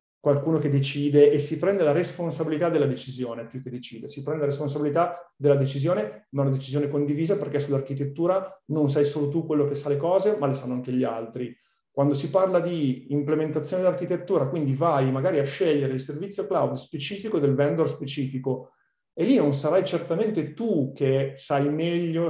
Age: 40-59